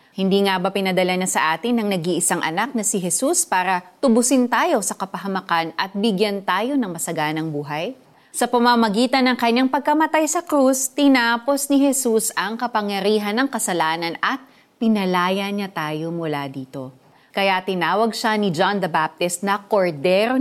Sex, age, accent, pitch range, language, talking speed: female, 30-49, native, 175-250 Hz, Filipino, 155 wpm